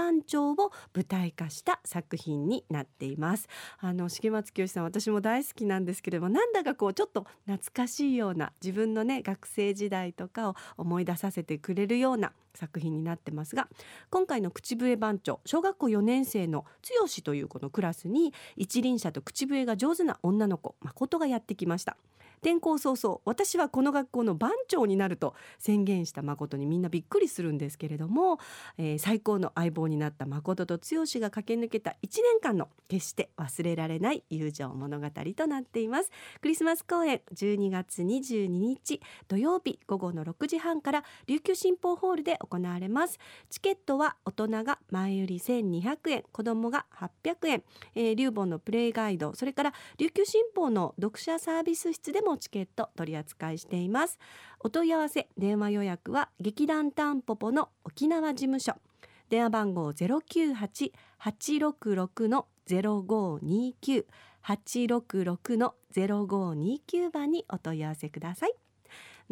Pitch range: 180-295 Hz